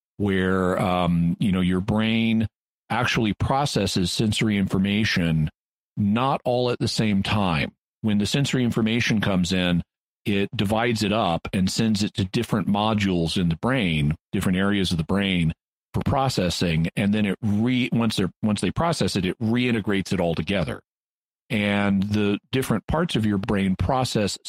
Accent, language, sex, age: American, English, male, 40-59